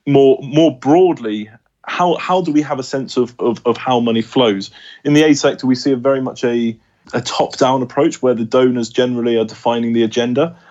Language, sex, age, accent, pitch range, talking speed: English, male, 20-39, British, 110-130 Hz, 205 wpm